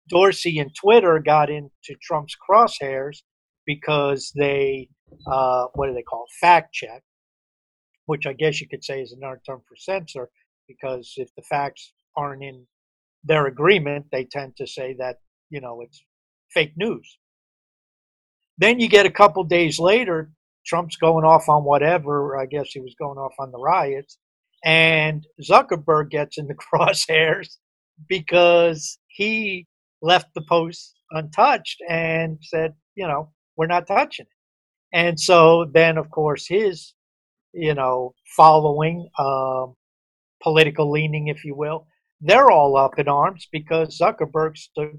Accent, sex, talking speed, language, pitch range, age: American, male, 150 wpm, English, 145-175 Hz, 50-69